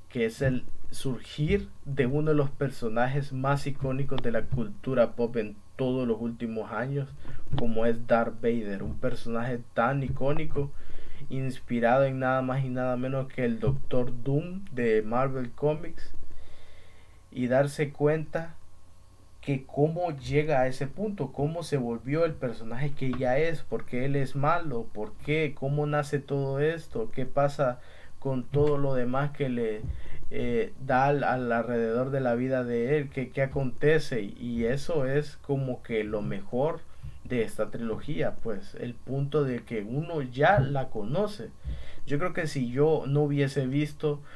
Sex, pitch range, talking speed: male, 115-140 Hz, 160 wpm